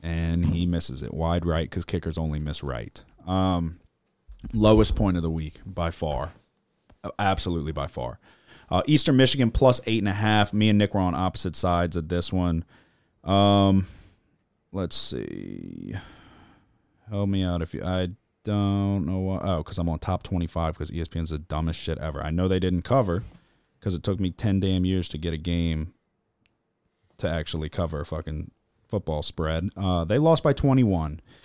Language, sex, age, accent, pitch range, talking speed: English, male, 30-49, American, 85-110 Hz, 180 wpm